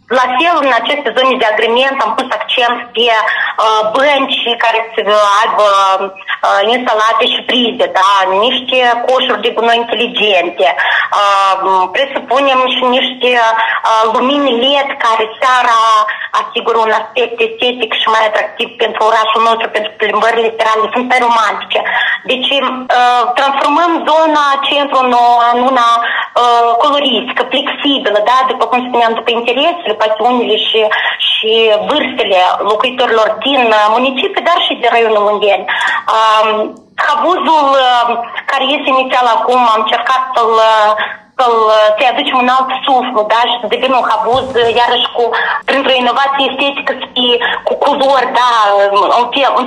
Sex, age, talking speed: female, 20-39, 125 wpm